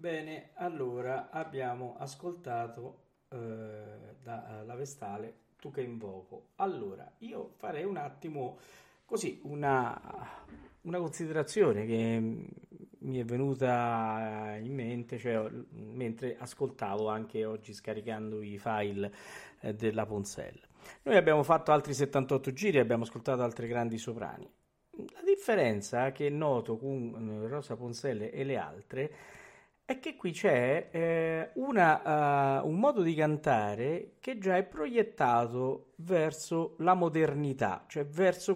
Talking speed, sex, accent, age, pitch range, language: 120 wpm, male, native, 50-69, 115-170 Hz, Italian